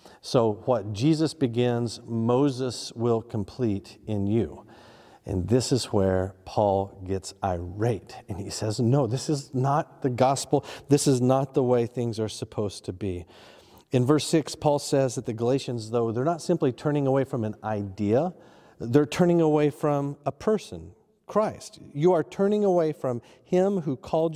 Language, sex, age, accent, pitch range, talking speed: English, male, 40-59, American, 115-145 Hz, 165 wpm